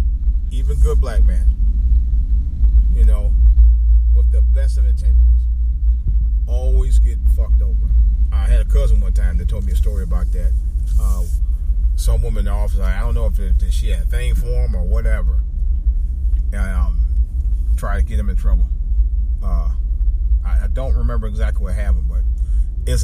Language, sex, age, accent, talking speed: English, male, 30-49, American, 175 wpm